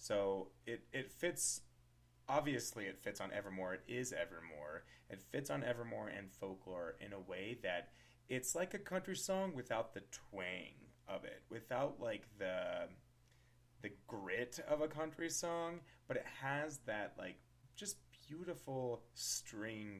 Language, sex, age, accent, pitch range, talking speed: English, male, 30-49, American, 100-150 Hz, 145 wpm